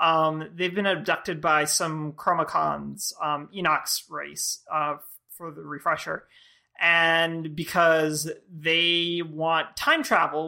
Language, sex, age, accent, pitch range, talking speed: English, male, 30-49, American, 160-210 Hz, 115 wpm